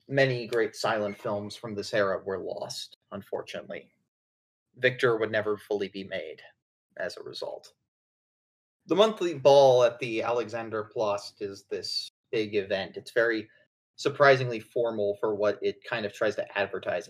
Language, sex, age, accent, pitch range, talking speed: English, male, 30-49, American, 105-130 Hz, 145 wpm